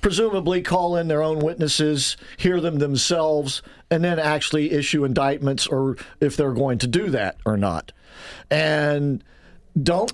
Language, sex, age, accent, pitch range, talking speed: English, male, 50-69, American, 135-165 Hz, 150 wpm